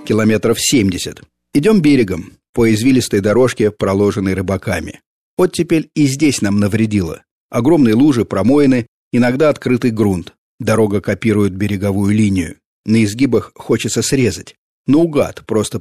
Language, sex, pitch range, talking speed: Russian, male, 100-115 Hz, 120 wpm